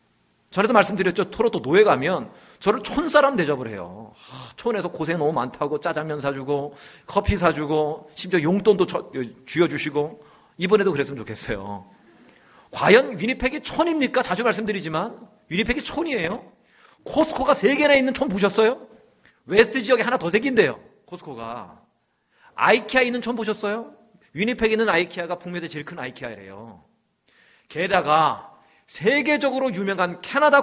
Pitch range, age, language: 165-260 Hz, 40-59, Korean